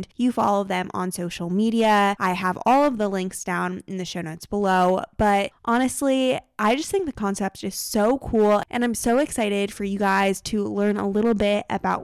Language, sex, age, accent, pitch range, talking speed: English, female, 20-39, American, 185-245 Hz, 205 wpm